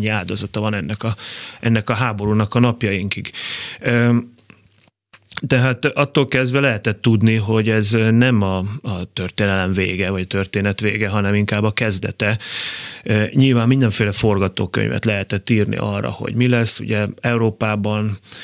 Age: 30-49